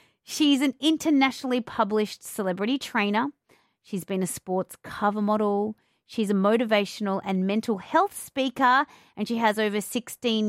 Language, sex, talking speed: English, female, 135 wpm